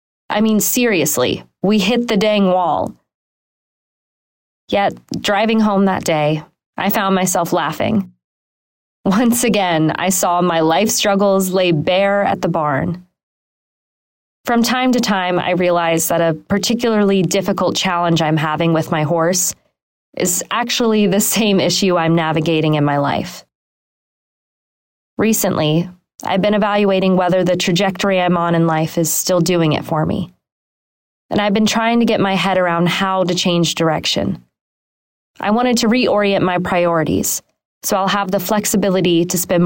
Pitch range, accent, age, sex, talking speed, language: 170-205 Hz, American, 20-39, female, 150 wpm, English